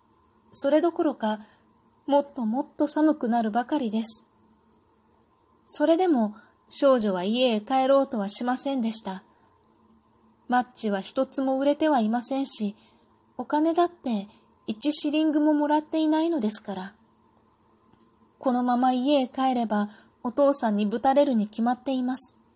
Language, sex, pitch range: Japanese, female, 210-275 Hz